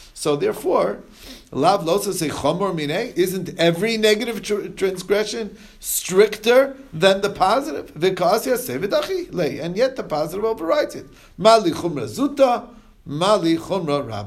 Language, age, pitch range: English, 50-69, 135-195 Hz